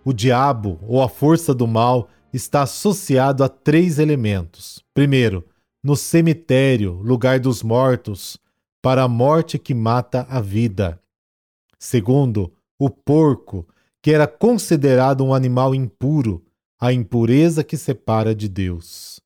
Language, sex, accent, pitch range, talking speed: Portuguese, male, Brazilian, 120-155 Hz, 125 wpm